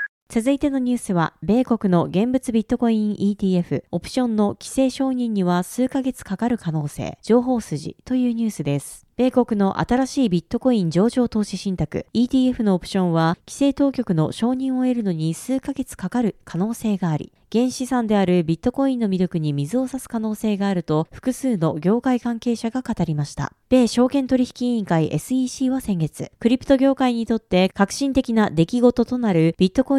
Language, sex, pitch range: Japanese, female, 180-255 Hz